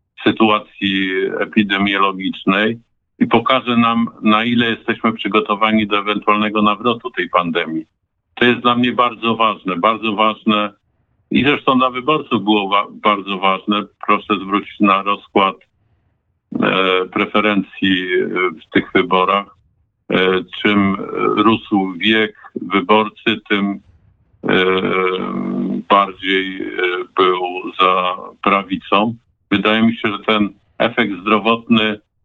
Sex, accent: male, native